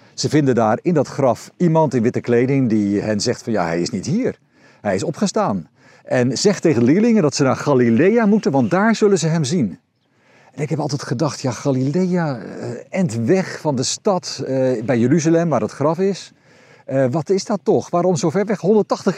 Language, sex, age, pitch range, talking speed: Dutch, male, 50-69, 125-185 Hz, 205 wpm